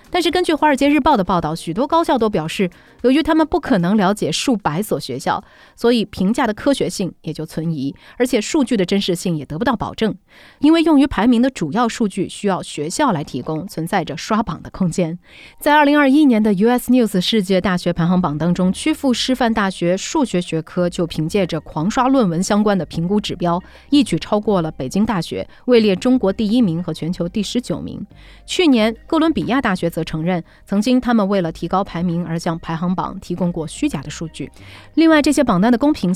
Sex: female